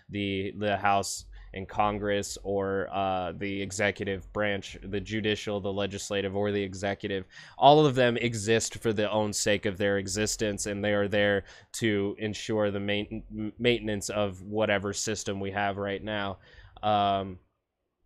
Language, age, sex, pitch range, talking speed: English, 20-39, male, 100-115 Hz, 150 wpm